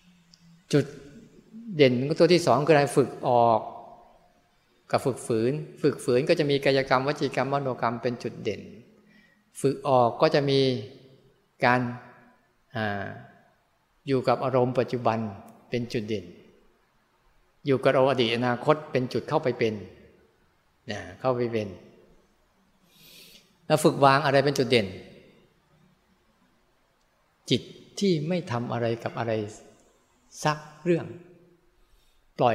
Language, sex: Thai, male